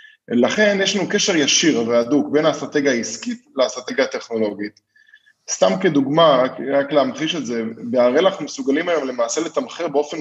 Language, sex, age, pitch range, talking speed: Hebrew, male, 20-39, 130-205 Hz, 140 wpm